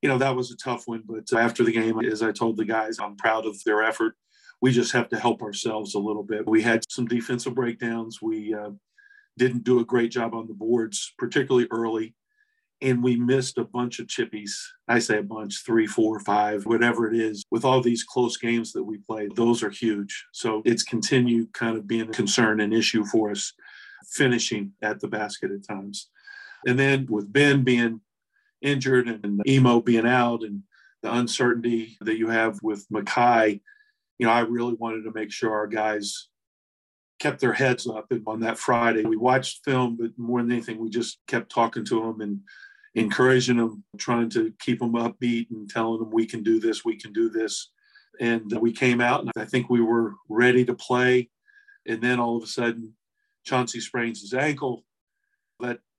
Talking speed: 195 wpm